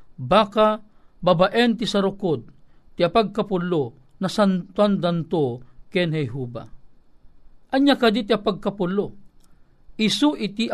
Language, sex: Filipino, male